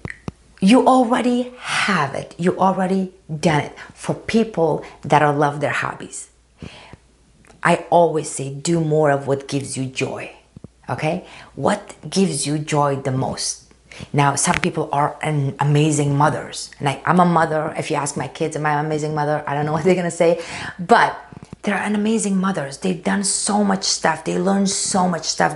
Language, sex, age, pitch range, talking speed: English, female, 30-49, 155-195 Hz, 175 wpm